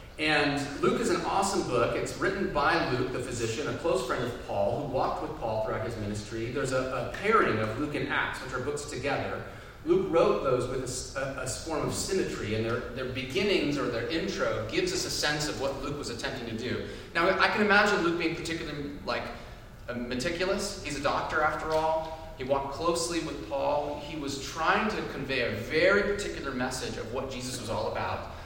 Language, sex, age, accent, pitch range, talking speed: English, male, 30-49, American, 115-160 Hz, 205 wpm